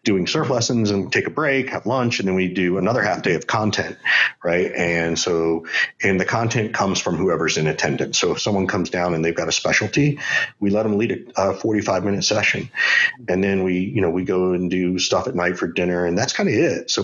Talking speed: 240 wpm